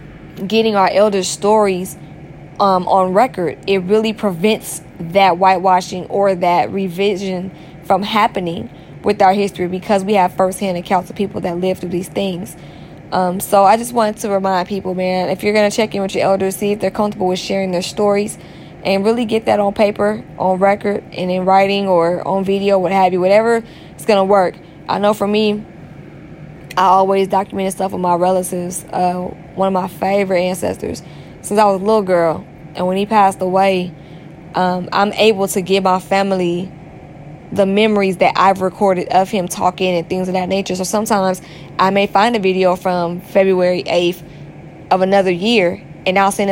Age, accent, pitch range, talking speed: 10-29, American, 180-200 Hz, 185 wpm